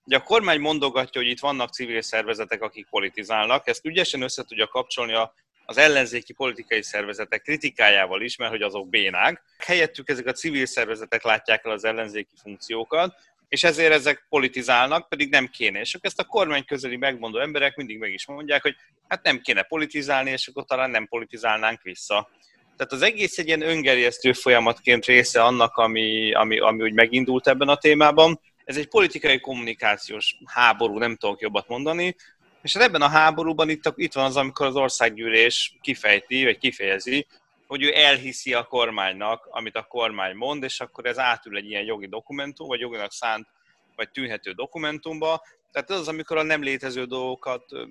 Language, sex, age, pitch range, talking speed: Hungarian, male, 30-49, 115-155 Hz, 170 wpm